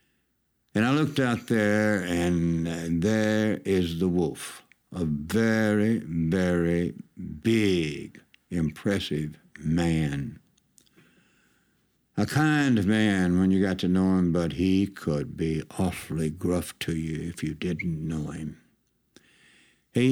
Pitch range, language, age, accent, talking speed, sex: 85-110 Hz, English, 60-79, American, 115 wpm, male